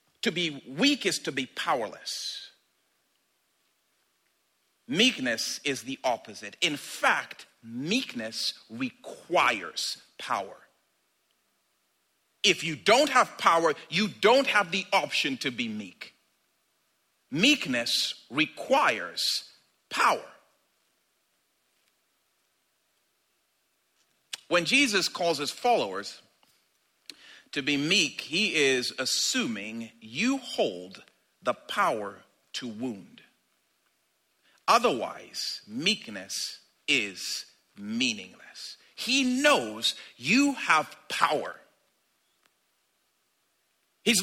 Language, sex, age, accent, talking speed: English, male, 50-69, American, 80 wpm